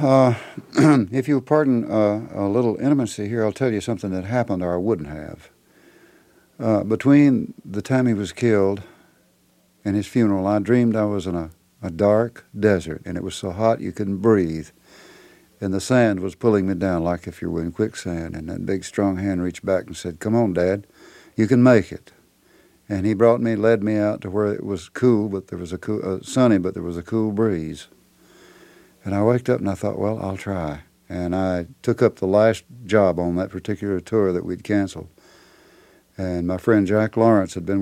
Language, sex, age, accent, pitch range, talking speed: English, male, 60-79, American, 90-110 Hz, 210 wpm